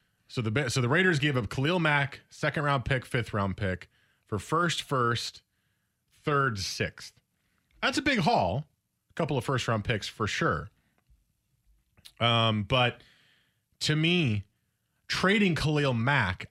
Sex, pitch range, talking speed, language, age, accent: male, 110-155 Hz, 120 wpm, English, 30-49, American